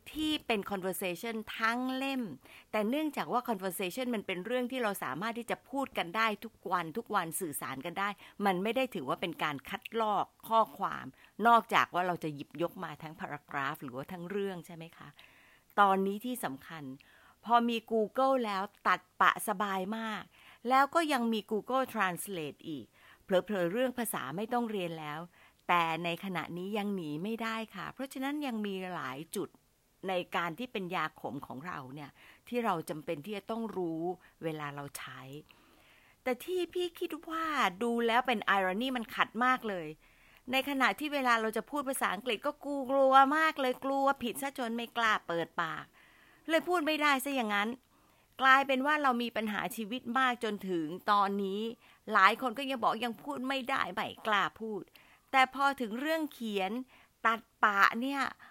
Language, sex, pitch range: English, female, 185-255 Hz